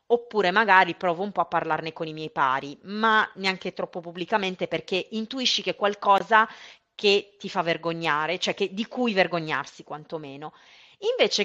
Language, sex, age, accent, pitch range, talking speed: Italian, female, 30-49, native, 180-225 Hz, 155 wpm